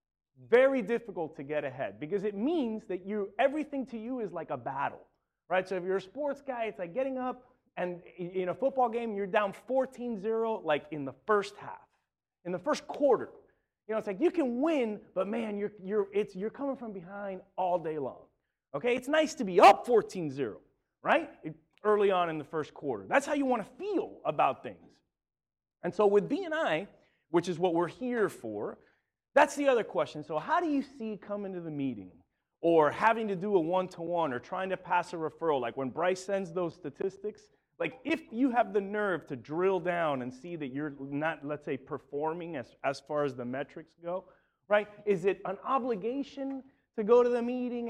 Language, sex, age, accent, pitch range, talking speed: English, male, 30-49, American, 175-245 Hz, 205 wpm